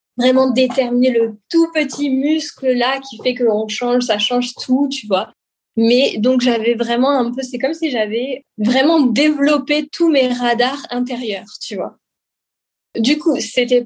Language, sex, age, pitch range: French, female, 20-39, 225-260 Hz